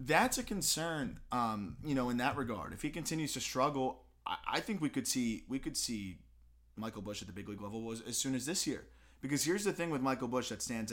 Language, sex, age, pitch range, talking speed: English, male, 20-39, 105-140 Hz, 245 wpm